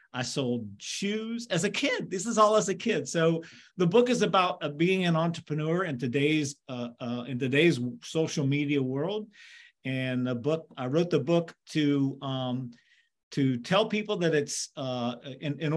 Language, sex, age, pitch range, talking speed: Bulgarian, male, 40-59, 135-185 Hz, 175 wpm